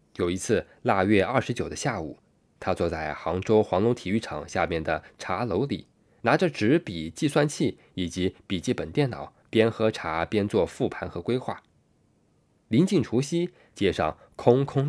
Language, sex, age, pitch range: Chinese, male, 20-39, 85-120 Hz